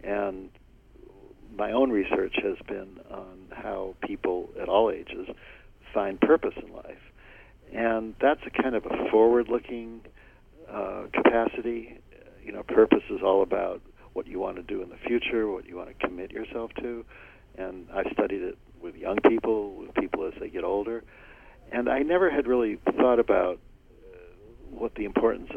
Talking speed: 160 wpm